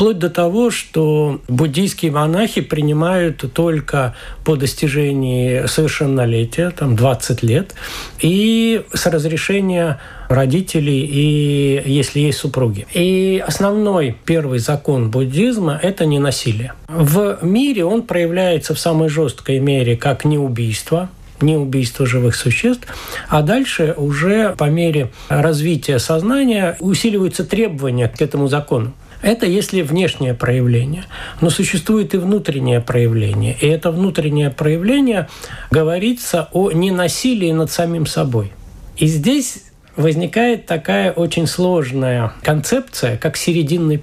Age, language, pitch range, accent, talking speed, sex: 60-79, Russian, 135-180 Hz, native, 115 wpm, male